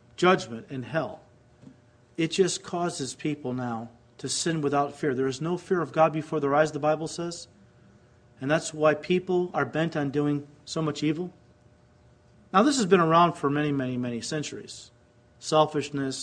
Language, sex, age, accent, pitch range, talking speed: English, male, 40-59, American, 130-180 Hz, 170 wpm